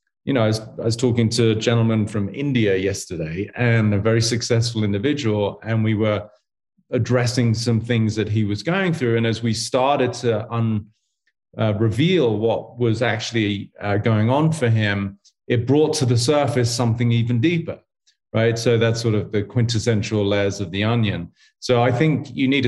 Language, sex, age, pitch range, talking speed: English, male, 30-49, 105-120 Hz, 175 wpm